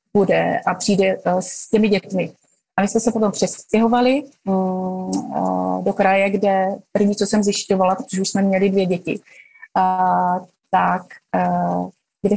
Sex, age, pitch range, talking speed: female, 30-49, 195-220 Hz, 155 wpm